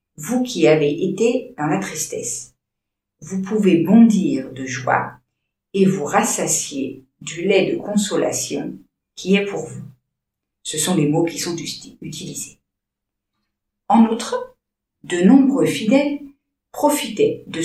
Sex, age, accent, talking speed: female, 50-69, French, 125 wpm